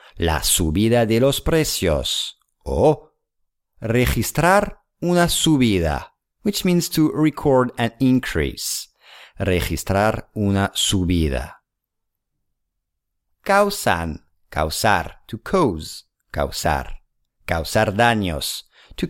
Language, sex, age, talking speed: English, male, 50-69, 85 wpm